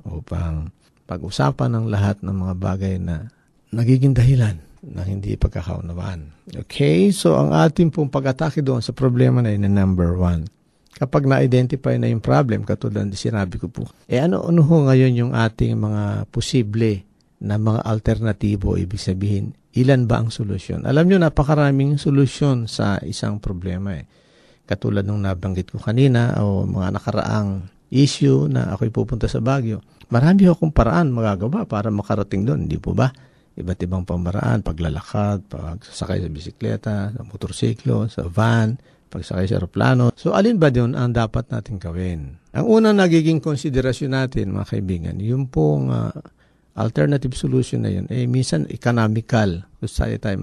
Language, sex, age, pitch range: Filipino, male, 50-69, 100-130 Hz